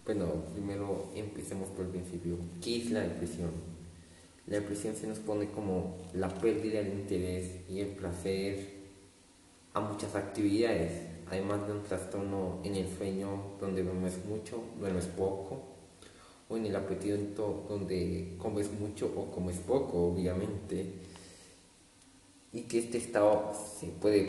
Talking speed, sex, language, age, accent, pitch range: 135 wpm, male, Spanish, 20-39, Spanish, 90-105 Hz